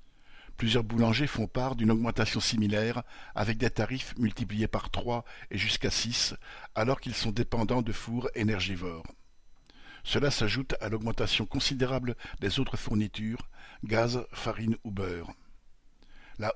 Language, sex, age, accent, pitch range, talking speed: French, male, 50-69, French, 105-125 Hz, 130 wpm